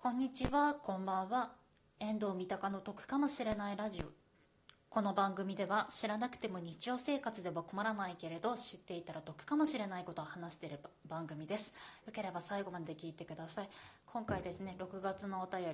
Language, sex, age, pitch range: Japanese, female, 20-39, 180-225 Hz